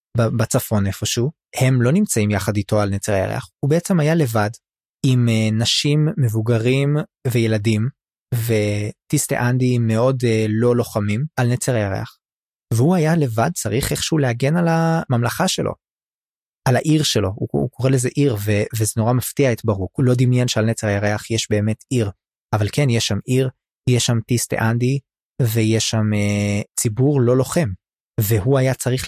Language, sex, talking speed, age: Hebrew, male, 160 wpm, 20-39